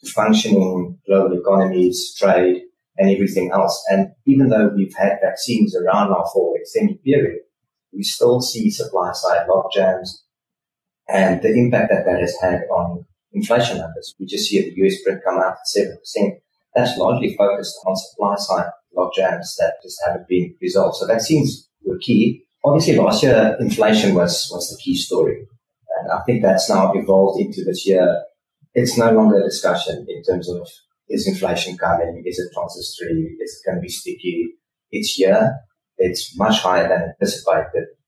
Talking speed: 170 wpm